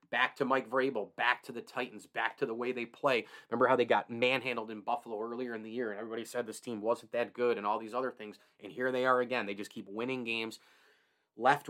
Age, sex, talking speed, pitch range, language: 30-49, male, 250 wpm, 110-125 Hz, English